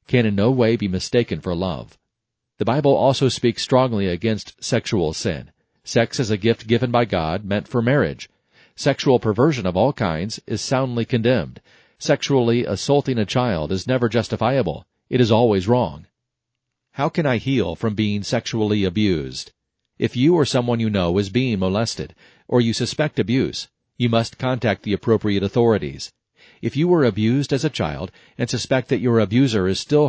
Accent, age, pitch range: American, 40-59, 105-125 Hz